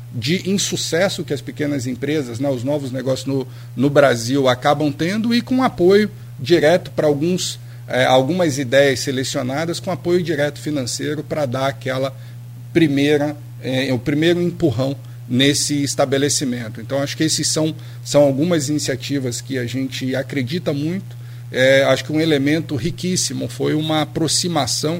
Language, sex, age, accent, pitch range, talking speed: Portuguese, male, 40-59, Brazilian, 125-155 Hz, 145 wpm